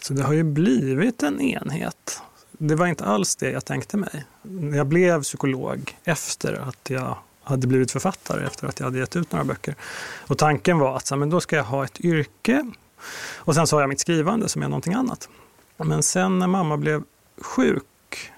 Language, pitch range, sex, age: Swedish, 130-165 Hz, male, 30-49